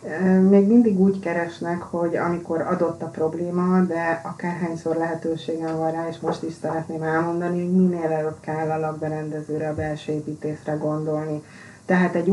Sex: female